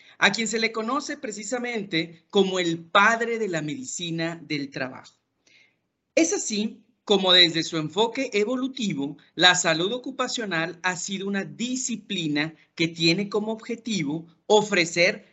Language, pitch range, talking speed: Spanish, 160-225 Hz, 130 wpm